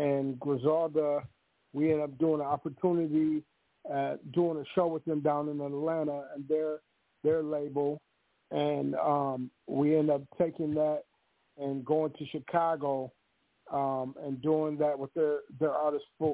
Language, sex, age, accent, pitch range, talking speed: English, male, 50-69, American, 145-170 Hz, 145 wpm